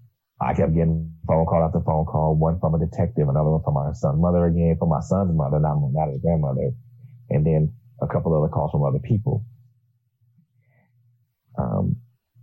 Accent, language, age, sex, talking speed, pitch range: American, English, 30-49, male, 185 wpm, 85-120 Hz